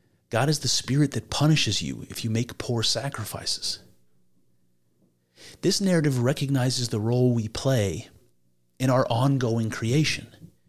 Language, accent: English, American